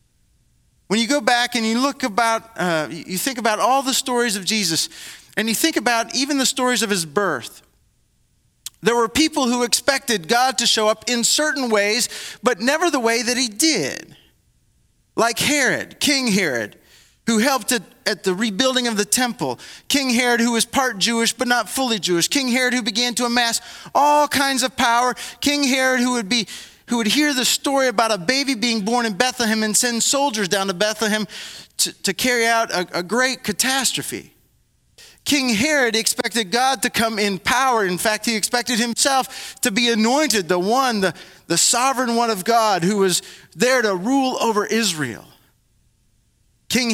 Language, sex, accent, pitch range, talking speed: English, male, American, 200-250 Hz, 180 wpm